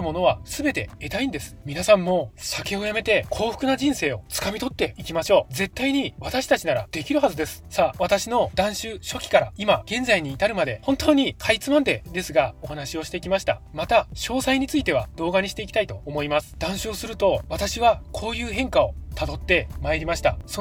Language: Japanese